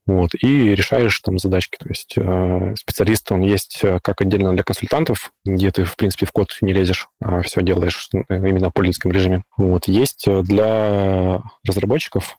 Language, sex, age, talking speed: Russian, male, 20-39, 165 wpm